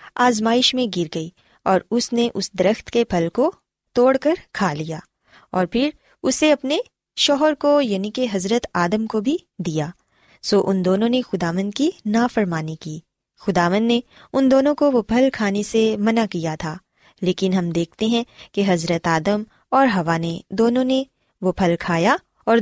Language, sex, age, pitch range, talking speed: Urdu, female, 20-39, 185-245 Hz, 180 wpm